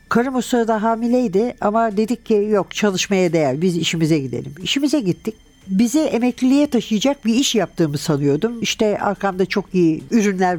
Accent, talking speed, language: native, 145 wpm, Turkish